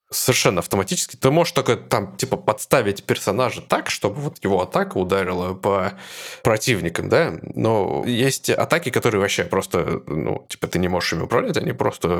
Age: 20-39